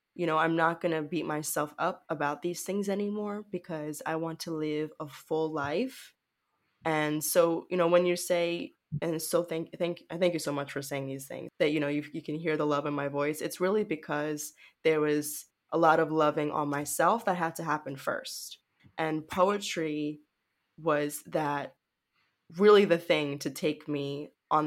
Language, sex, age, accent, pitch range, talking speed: English, female, 20-39, American, 150-185 Hz, 195 wpm